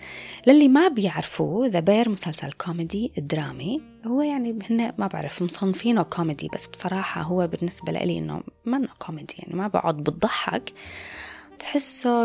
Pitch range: 175-245 Hz